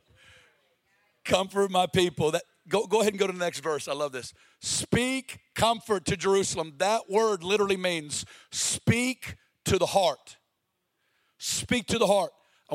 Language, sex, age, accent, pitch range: Japanese, male, 50-69, American, 185-235 Hz